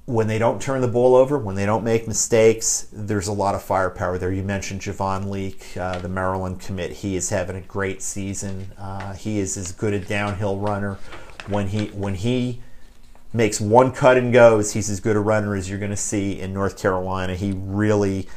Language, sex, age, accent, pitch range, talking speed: English, male, 40-59, American, 95-110 Hz, 210 wpm